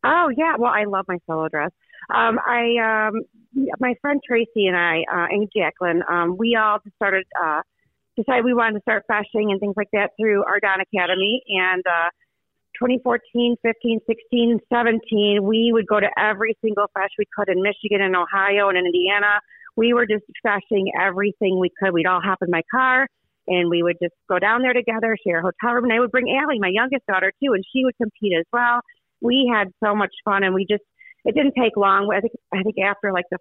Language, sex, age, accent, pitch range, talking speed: English, female, 40-59, American, 185-235 Hz, 210 wpm